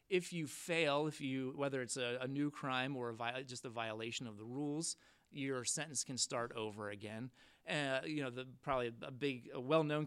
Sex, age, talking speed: male, 30-49, 210 wpm